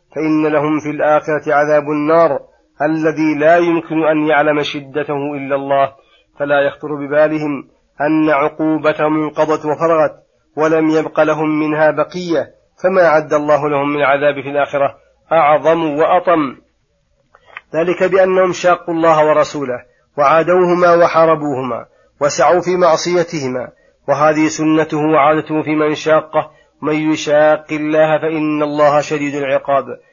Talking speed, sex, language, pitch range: 120 wpm, male, Arabic, 145-160 Hz